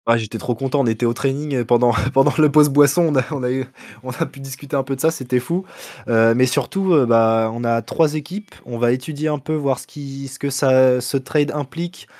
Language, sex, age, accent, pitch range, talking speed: French, male, 20-39, French, 120-155 Hz, 245 wpm